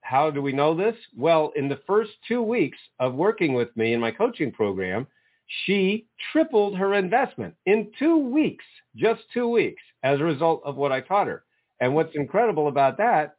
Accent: American